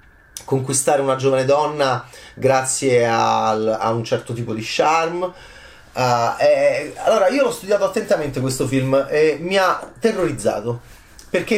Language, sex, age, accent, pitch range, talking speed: Italian, male, 30-49, native, 120-175 Hz, 130 wpm